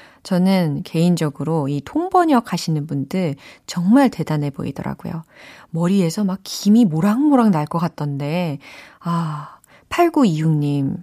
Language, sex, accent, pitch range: Korean, female, native, 155-240 Hz